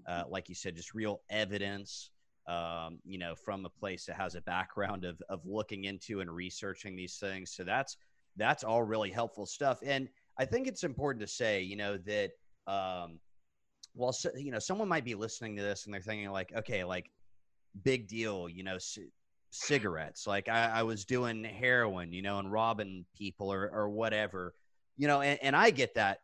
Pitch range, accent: 100-125 Hz, American